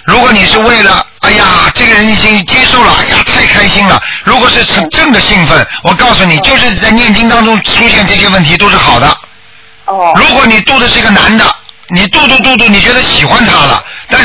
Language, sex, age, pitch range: Chinese, male, 50-69, 185-220 Hz